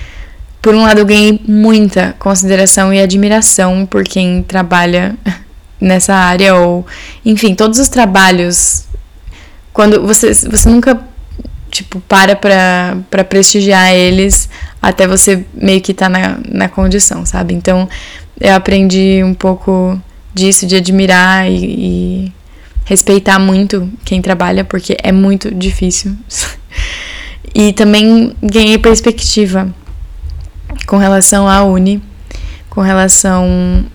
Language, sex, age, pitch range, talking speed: Portuguese, female, 10-29, 180-205 Hz, 115 wpm